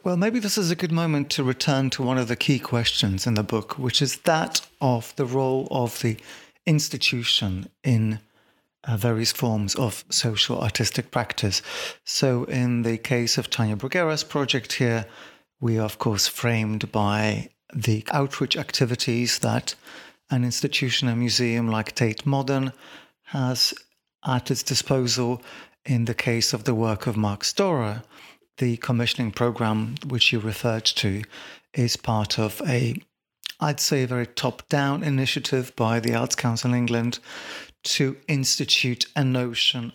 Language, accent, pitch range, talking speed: English, British, 115-140 Hz, 150 wpm